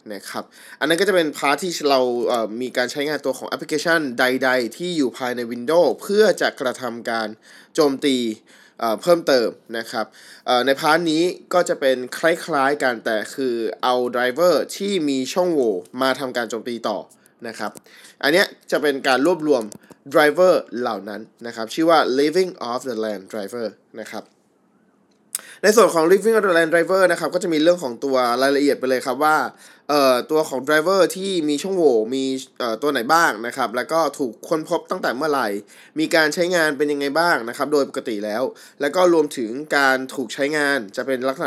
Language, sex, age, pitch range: Thai, male, 20-39, 125-165 Hz